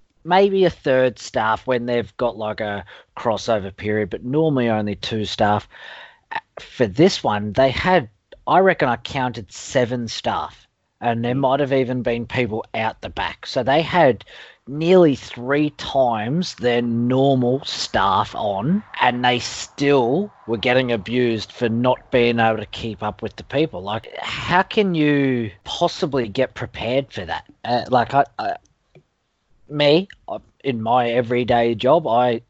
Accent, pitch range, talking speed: Australian, 115-150 Hz, 150 wpm